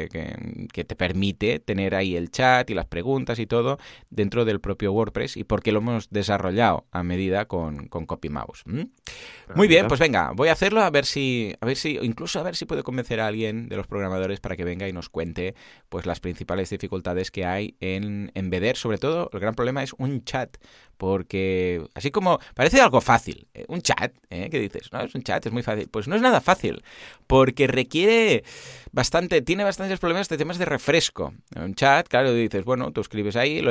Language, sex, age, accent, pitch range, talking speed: Spanish, male, 20-39, Spanish, 95-120 Hz, 205 wpm